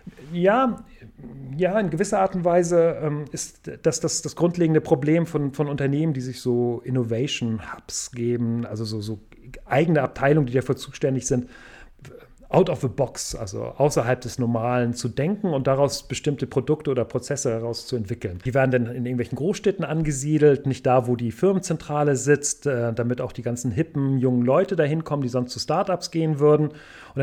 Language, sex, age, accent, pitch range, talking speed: German, male, 40-59, German, 120-155 Hz, 170 wpm